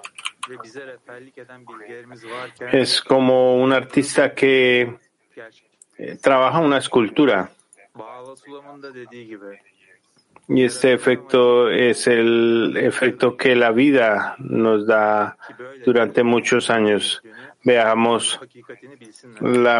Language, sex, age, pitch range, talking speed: Spanish, male, 40-59, 110-125 Hz, 75 wpm